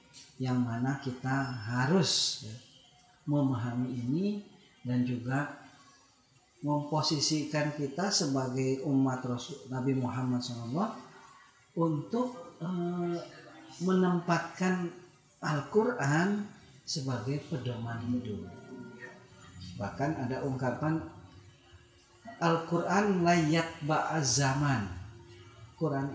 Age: 50-69